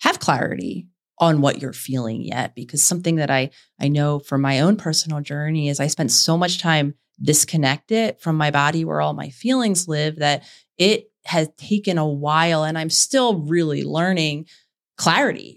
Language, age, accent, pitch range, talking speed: English, 30-49, American, 150-190 Hz, 175 wpm